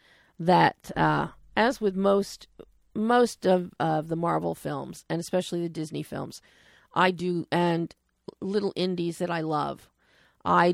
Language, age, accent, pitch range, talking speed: English, 40-59, American, 170-205 Hz, 140 wpm